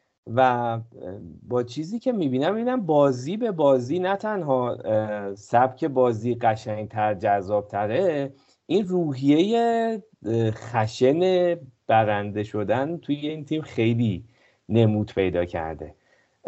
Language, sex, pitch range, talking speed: Persian, male, 110-145 Hz, 95 wpm